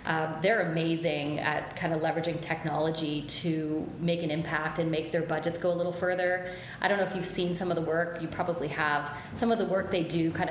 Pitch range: 165-185 Hz